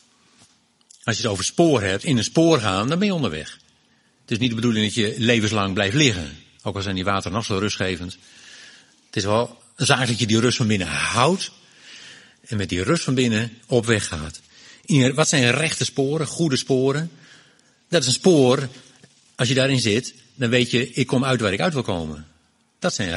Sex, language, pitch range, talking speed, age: male, Dutch, 105-135 Hz, 210 wpm, 60-79